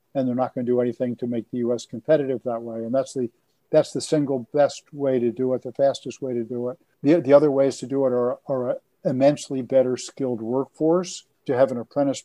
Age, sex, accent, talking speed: 50-69, male, American, 240 wpm